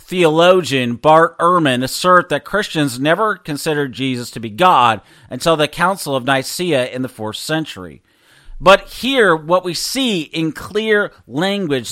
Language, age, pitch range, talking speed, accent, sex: English, 40-59, 135-175 Hz, 145 wpm, American, male